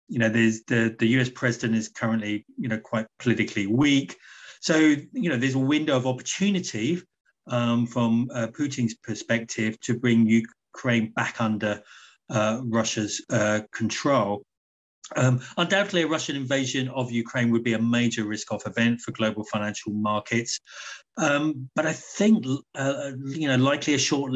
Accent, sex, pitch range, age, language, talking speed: British, male, 115-130 Hz, 30-49, English, 155 wpm